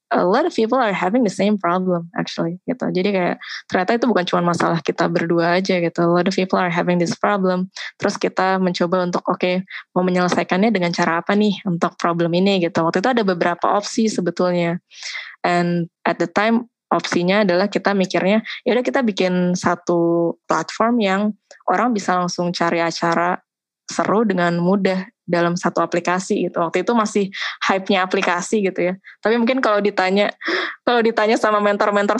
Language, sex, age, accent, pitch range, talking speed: Indonesian, female, 20-39, native, 175-215 Hz, 175 wpm